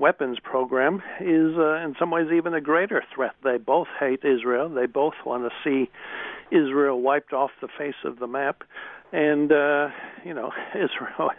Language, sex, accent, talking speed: English, male, American, 175 wpm